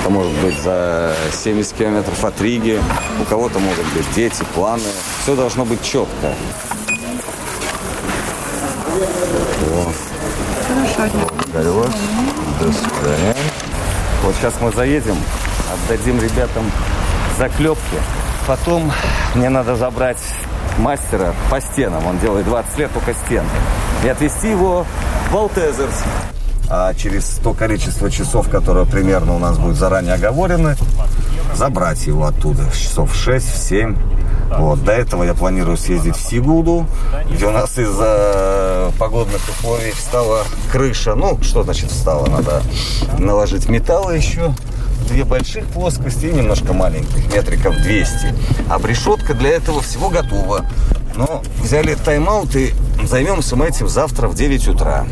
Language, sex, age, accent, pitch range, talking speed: Russian, male, 40-59, native, 95-130 Hz, 120 wpm